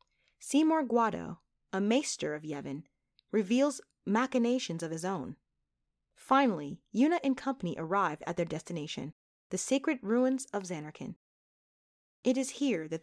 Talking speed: 130 wpm